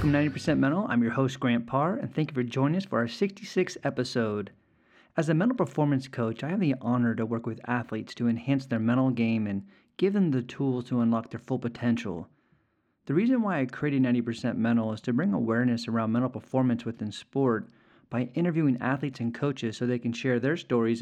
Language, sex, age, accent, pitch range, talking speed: English, male, 40-59, American, 120-145 Hz, 210 wpm